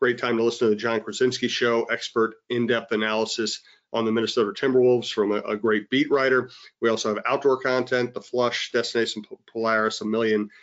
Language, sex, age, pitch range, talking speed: English, male, 40-59, 115-135 Hz, 185 wpm